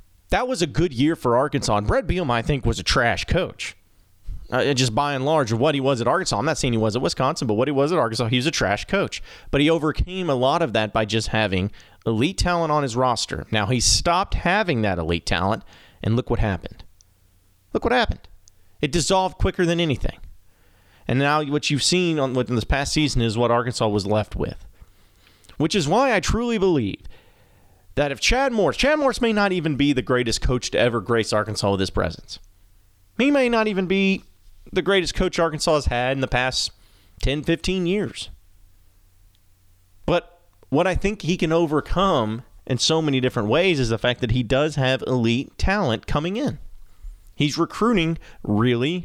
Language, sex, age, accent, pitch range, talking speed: English, male, 30-49, American, 95-155 Hz, 200 wpm